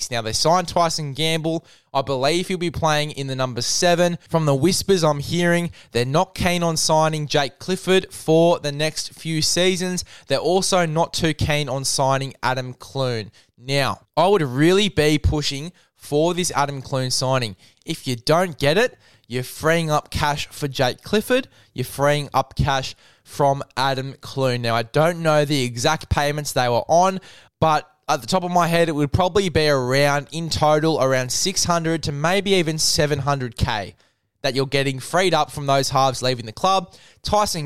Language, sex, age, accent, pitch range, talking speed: English, male, 10-29, Australian, 135-170 Hz, 180 wpm